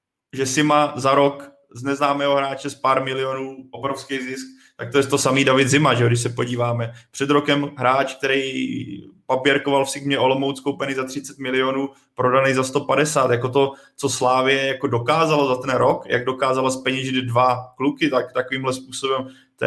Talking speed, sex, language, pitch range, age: 175 wpm, male, Czech, 125-140 Hz, 20-39